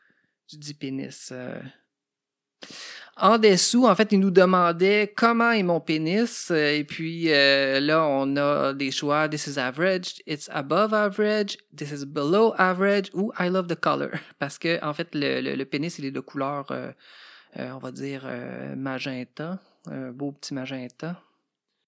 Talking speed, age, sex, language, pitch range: 165 wpm, 30-49, male, French, 140-180 Hz